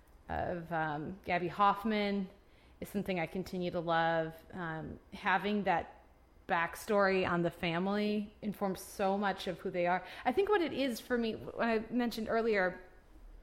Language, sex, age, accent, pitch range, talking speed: English, female, 30-49, American, 175-230 Hz, 155 wpm